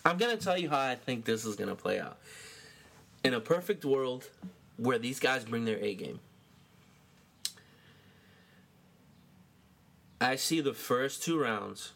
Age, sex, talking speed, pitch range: 20-39, male, 155 wpm, 115-160 Hz